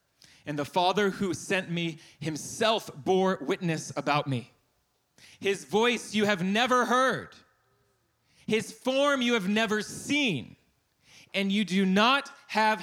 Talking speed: 130 wpm